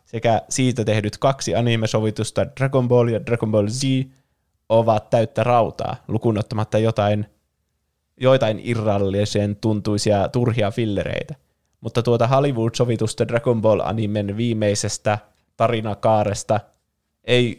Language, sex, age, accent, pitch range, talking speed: Finnish, male, 20-39, native, 105-120 Hz, 100 wpm